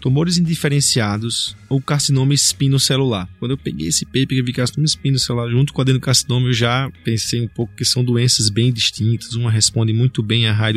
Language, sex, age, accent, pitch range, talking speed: Portuguese, male, 20-39, Brazilian, 115-140 Hz, 195 wpm